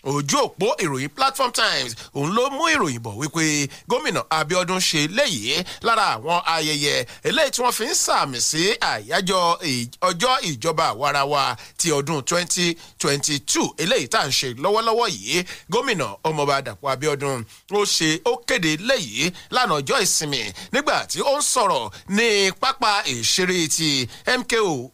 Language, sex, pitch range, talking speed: English, male, 155-225 Hz, 150 wpm